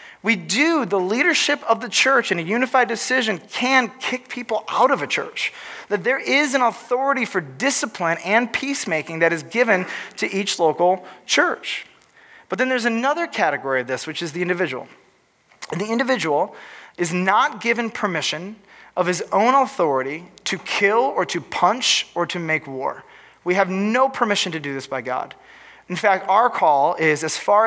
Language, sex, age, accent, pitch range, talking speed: English, male, 30-49, American, 160-245 Hz, 175 wpm